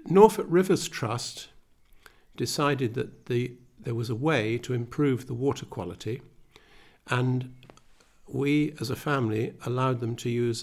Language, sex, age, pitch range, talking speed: English, male, 60-79, 110-140 Hz, 130 wpm